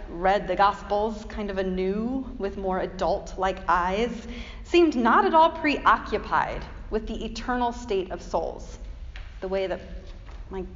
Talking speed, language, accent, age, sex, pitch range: 140 wpm, English, American, 30-49, female, 175-235 Hz